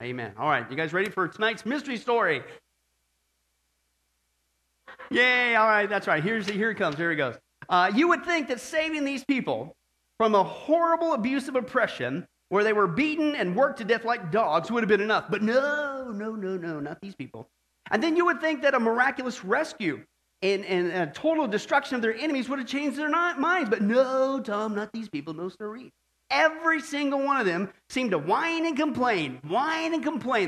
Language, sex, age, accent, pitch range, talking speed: English, male, 40-59, American, 195-295 Hz, 195 wpm